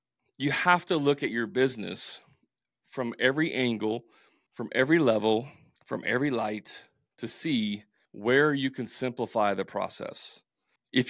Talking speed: 135 wpm